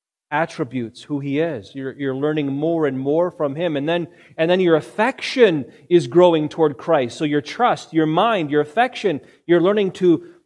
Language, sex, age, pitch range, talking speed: English, male, 40-59, 135-170 Hz, 185 wpm